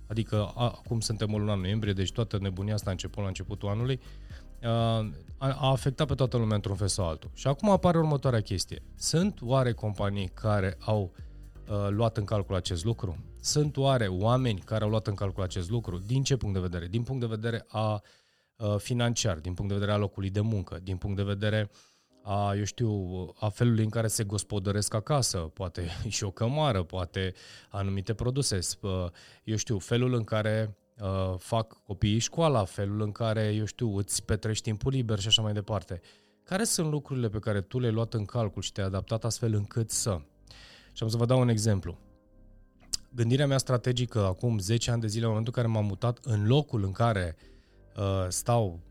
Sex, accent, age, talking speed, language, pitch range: male, native, 20-39, 190 wpm, Romanian, 100-115 Hz